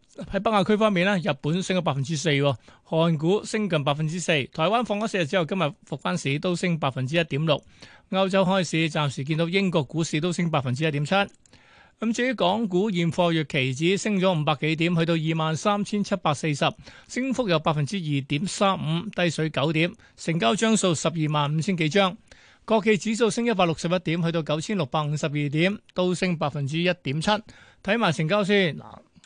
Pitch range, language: 155-195 Hz, Chinese